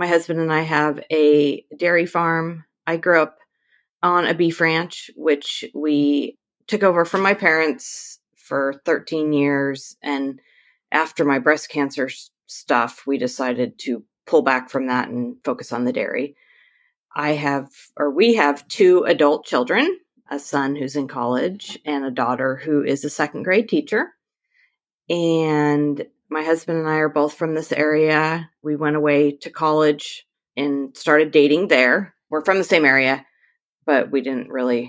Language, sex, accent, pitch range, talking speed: English, female, American, 140-165 Hz, 160 wpm